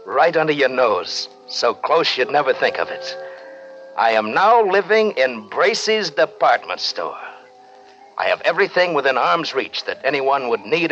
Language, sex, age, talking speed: English, male, 60-79, 160 wpm